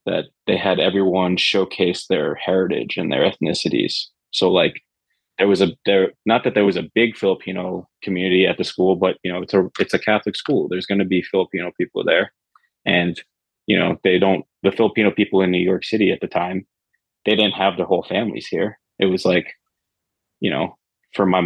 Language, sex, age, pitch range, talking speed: English, male, 20-39, 90-100 Hz, 200 wpm